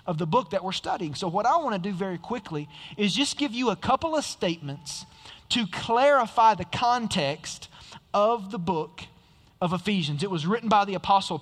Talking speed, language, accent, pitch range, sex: 190 wpm, English, American, 155-215 Hz, male